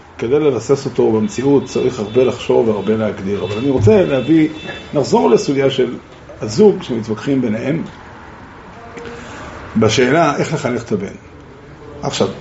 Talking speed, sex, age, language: 120 wpm, male, 50-69, Hebrew